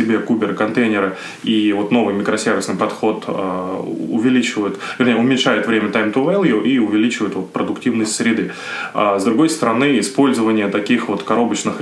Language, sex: Russian, male